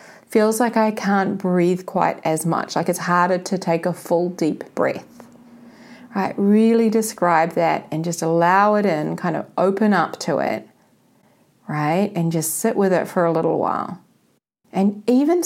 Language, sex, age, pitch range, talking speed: English, female, 30-49, 175-235 Hz, 170 wpm